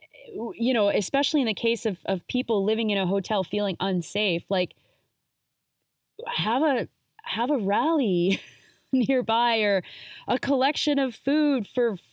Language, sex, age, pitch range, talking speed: English, female, 30-49, 180-245 Hz, 140 wpm